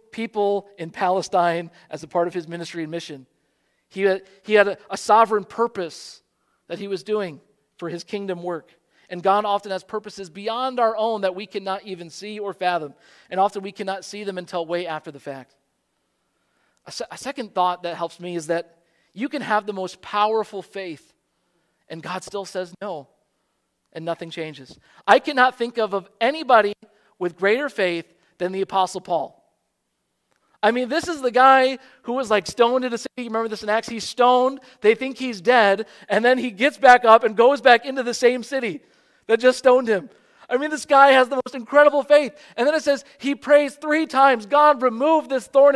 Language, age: English, 40-59